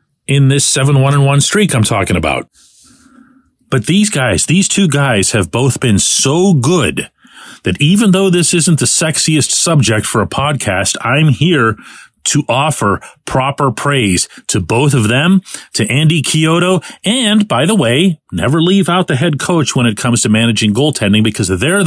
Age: 40-59